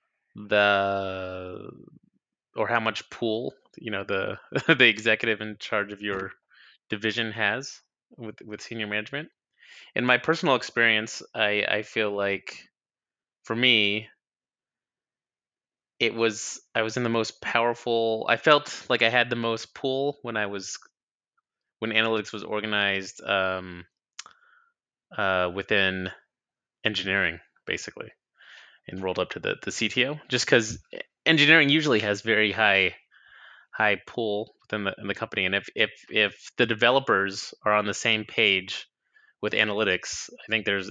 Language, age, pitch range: English, 20-39, 95-115 Hz